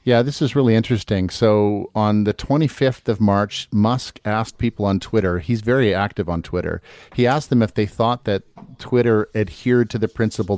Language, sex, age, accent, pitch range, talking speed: English, male, 50-69, American, 95-115 Hz, 185 wpm